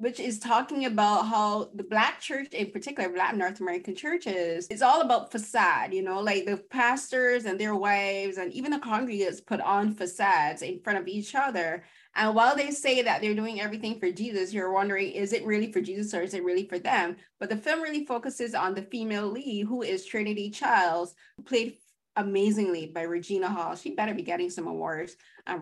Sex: female